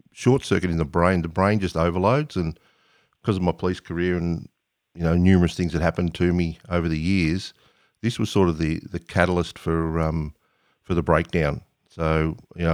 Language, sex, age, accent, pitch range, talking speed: English, male, 50-69, Australian, 80-95 Hz, 190 wpm